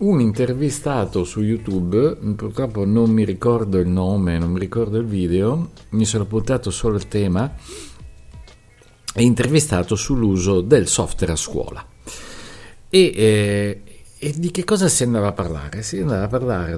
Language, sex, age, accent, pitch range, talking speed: Italian, male, 50-69, native, 90-130 Hz, 150 wpm